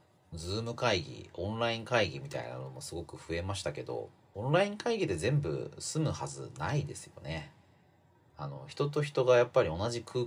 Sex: male